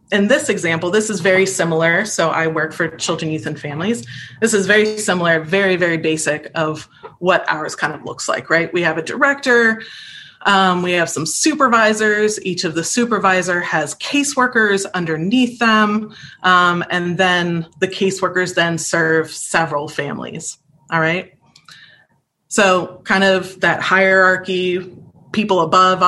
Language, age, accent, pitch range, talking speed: English, 20-39, American, 165-200 Hz, 150 wpm